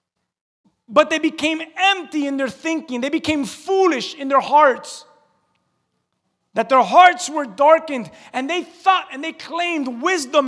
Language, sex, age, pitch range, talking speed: English, male, 30-49, 255-320 Hz, 145 wpm